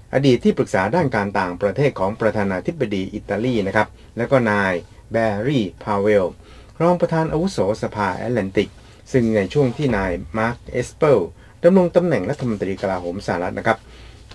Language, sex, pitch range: Thai, male, 100-130 Hz